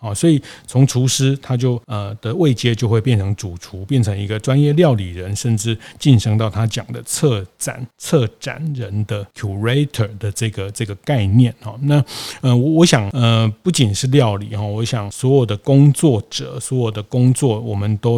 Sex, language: male, Chinese